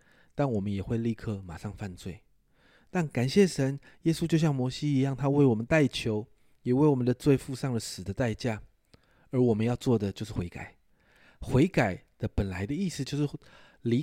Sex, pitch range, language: male, 100-140 Hz, Chinese